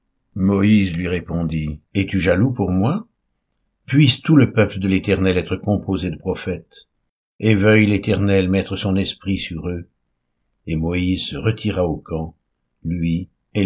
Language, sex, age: French, male, 60-79